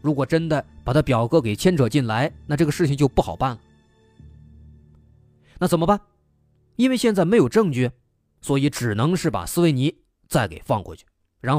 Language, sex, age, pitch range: Chinese, male, 20-39, 100-155 Hz